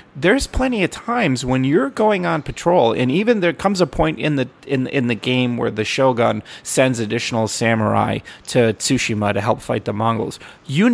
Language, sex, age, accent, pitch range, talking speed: English, male, 30-49, American, 110-145 Hz, 190 wpm